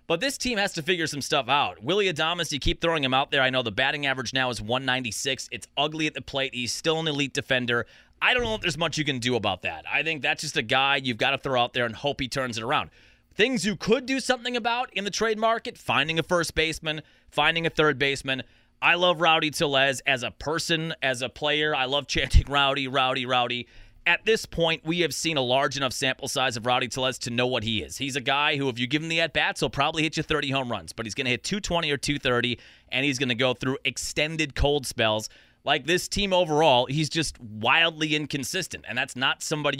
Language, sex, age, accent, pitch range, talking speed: English, male, 30-49, American, 130-160 Hz, 245 wpm